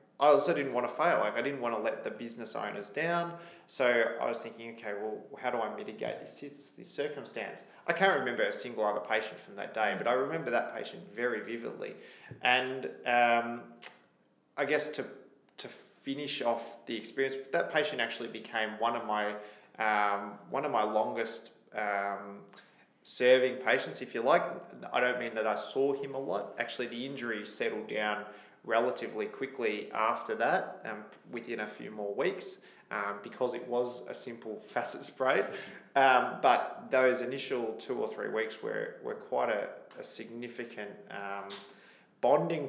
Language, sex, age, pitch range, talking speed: English, male, 20-39, 110-145 Hz, 175 wpm